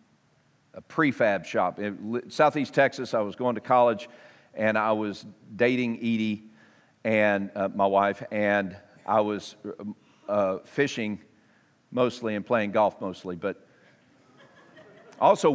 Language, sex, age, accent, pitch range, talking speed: English, male, 50-69, American, 105-135 Hz, 125 wpm